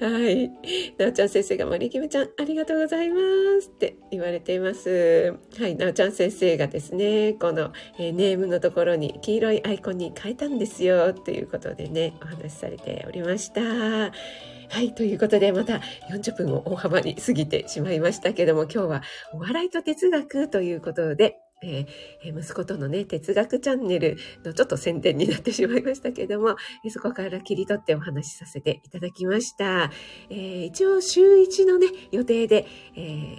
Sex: female